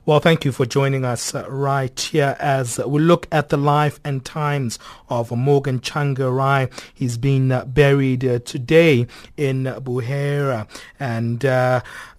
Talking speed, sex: 150 wpm, male